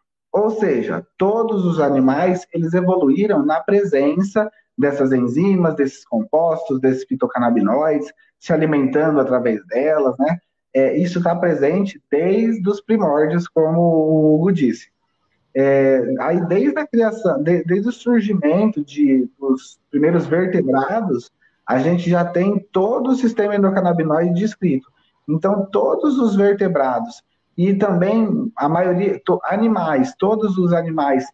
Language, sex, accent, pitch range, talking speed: Portuguese, male, Brazilian, 145-200 Hz, 125 wpm